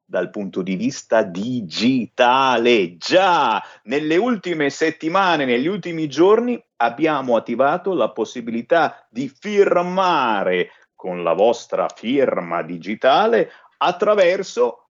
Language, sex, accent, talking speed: Italian, male, native, 95 wpm